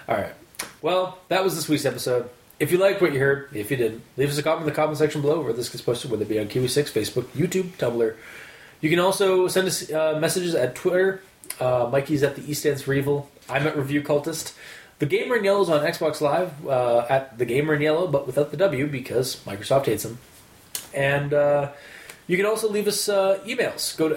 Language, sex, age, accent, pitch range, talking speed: English, male, 20-39, American, 140-185 Hz, 225 wpm